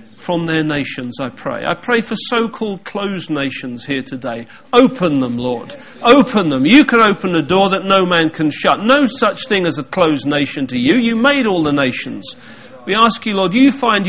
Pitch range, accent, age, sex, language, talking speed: 135-190 Hz, British, 40-59, male, English, 205 wpm